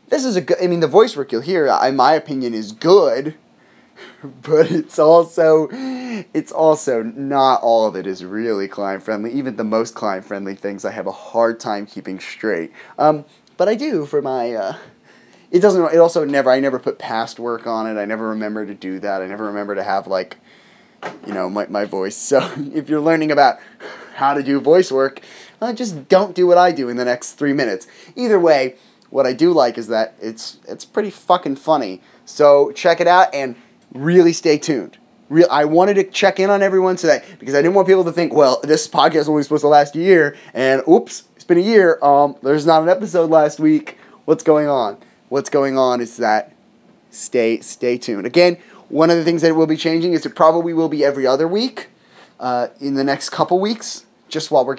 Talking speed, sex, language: 215 wpm, male, English